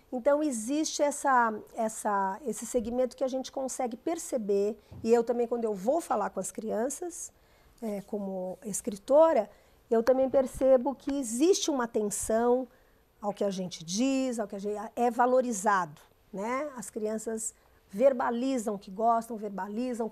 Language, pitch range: Portuguese, 215-270 Hz